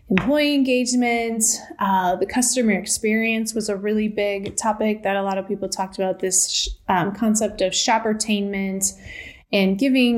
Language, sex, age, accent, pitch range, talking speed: English, female, 30-49, American, 185-220 Hz, 145 wpm